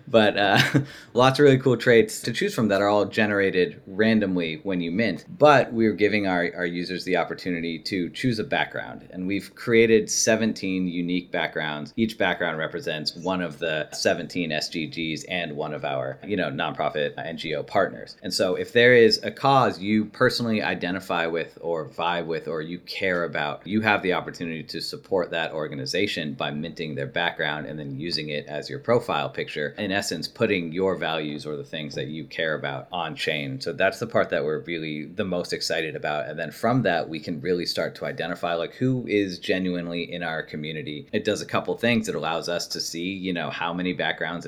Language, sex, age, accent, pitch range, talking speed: English, male, 30-49, American, 80-105 Hz, 200 wpm